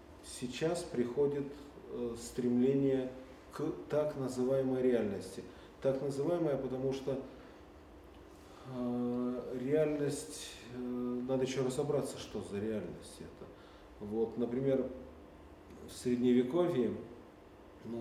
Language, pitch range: Russian, 115-135 Hz